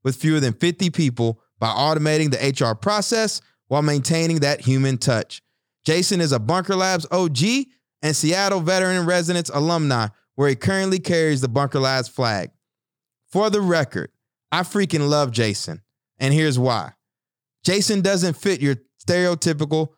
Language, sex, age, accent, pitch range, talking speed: English, male, 20-39, American, 135-175 Hz, 145 wpm